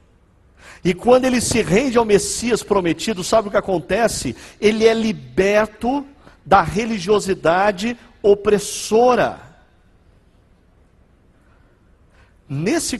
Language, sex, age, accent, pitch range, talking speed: Portuguese, male, 50-69, Brazilian, 155-240 Hz, 90 wpm